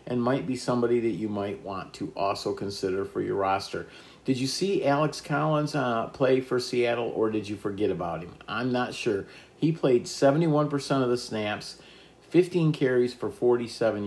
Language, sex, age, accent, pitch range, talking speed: English, male, 50-69, American, 100-130 Hz, 180 wpm